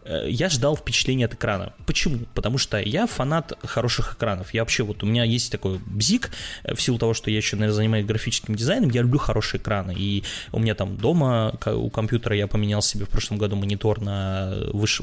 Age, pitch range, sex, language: 20-39, 105-120 Hz, male, Russian